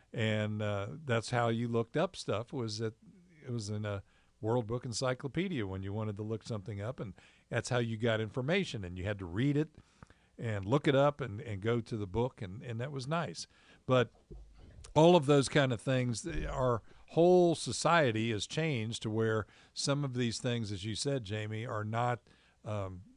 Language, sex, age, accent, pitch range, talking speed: English, male, 50-69, American, 110-135 Hz, 195 wpm